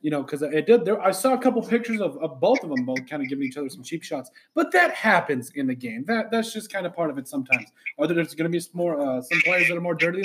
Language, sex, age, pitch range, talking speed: English, male, 30-49, 160-210 Hz, 320 wpm